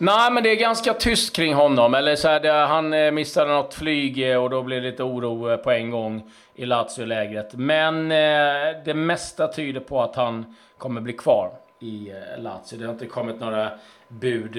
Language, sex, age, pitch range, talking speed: Swedish, male, 30-49, 115-155 Hz, 190 wpm